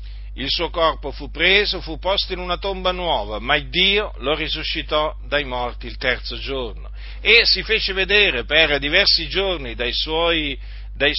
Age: 50-69